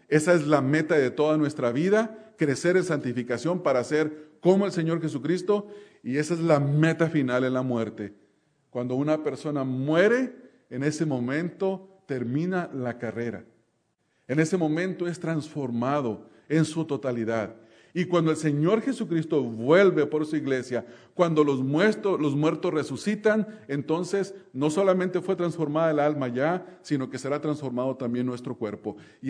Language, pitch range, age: English, 130-175 Hz, 40-59